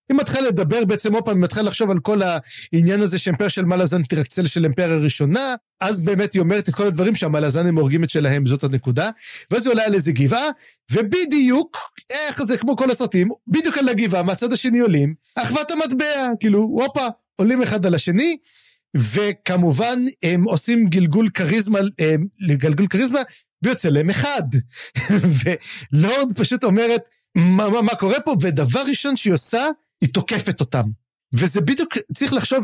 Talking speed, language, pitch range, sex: 155 wpm, Hebrew, 165-240 Hz, male